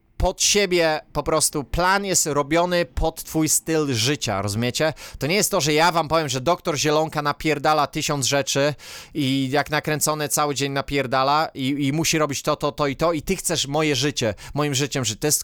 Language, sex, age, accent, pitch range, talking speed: Polish, male, 20-39, native, 145-175 Hz, 200 wpm